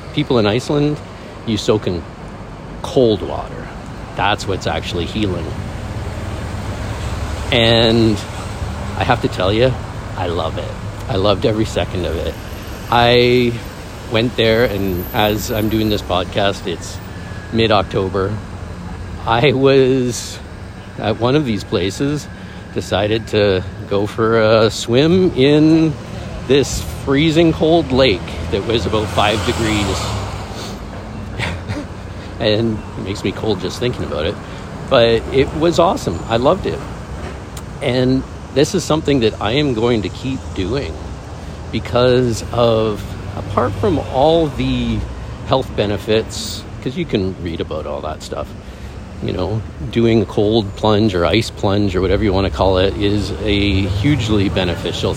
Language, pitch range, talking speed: English, 95-115 Hz, 135 wpm